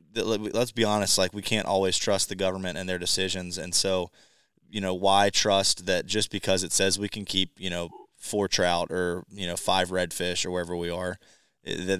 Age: 20-39